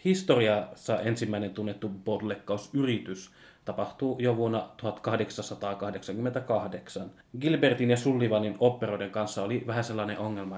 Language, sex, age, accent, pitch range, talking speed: Finnish, male, 20-39, native, 105-125 Hz, 95 wpm